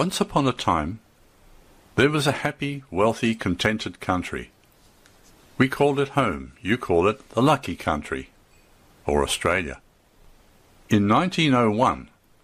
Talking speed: 120 wpm